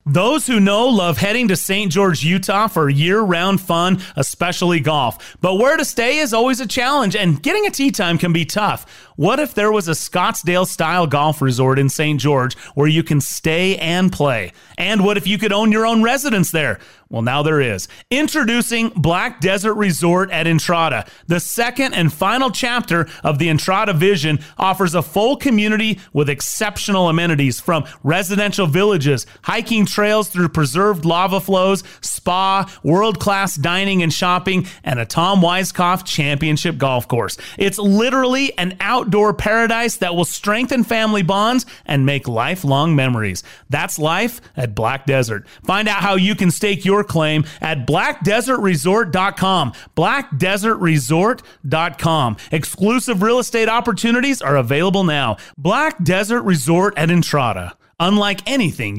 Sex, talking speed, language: male, 150 wpm, English